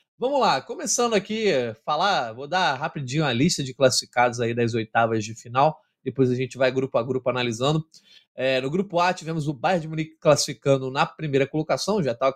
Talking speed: 195 wpm